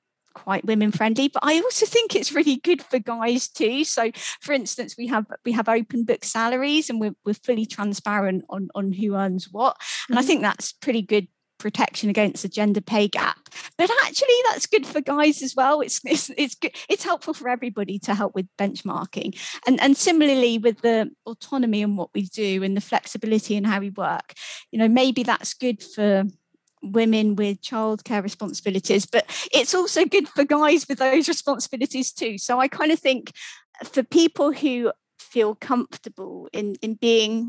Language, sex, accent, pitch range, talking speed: English, female, British, 205-270 Hz, 185 wpm